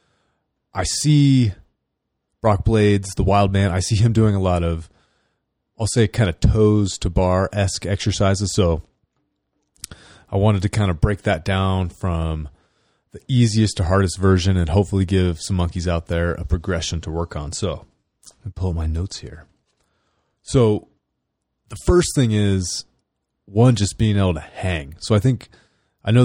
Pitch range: 90-110 Hz